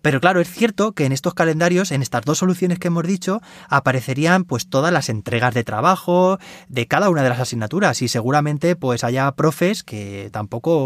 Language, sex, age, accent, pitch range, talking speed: Spanish, male, 20-39, Spanish, 125-175 Hz, 180 wpm